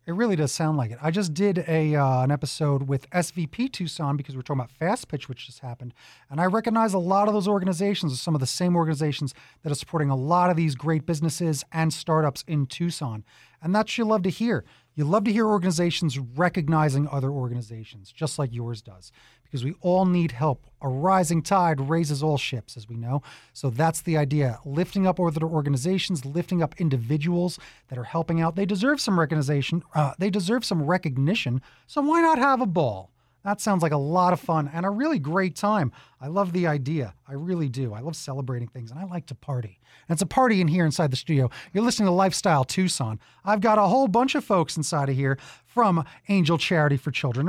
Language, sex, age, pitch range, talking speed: English, male, 30-49, 140-190 Hz, 215 wpm